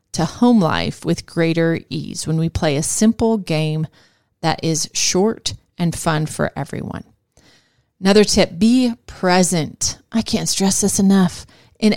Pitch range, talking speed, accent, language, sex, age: 165-205 Hz, 145 wpm, American, English, female, 30-49